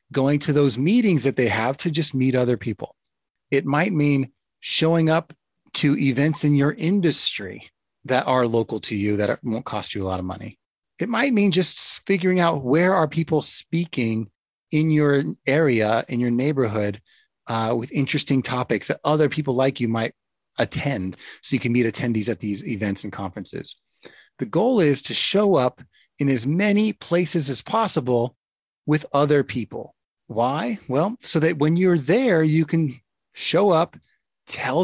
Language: English